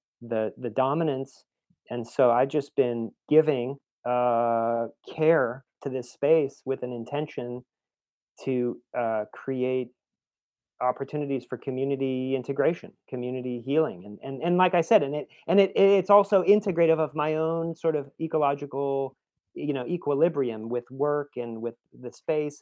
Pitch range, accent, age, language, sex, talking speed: 120-150 Hz, American, 30-49, English, male, 145 wpm